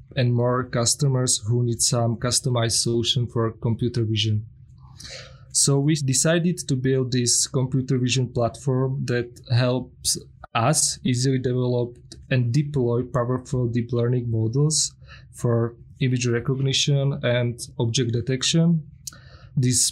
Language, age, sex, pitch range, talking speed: English, 20-39, male, 120-135 Hz, 115 wpm